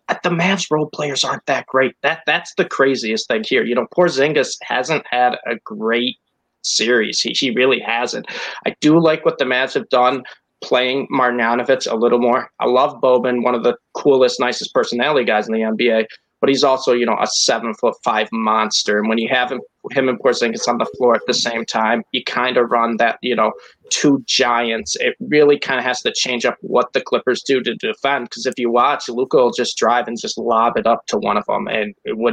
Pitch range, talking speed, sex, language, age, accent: 120-150 Hz, 220 wpm, male, English, 20-39, American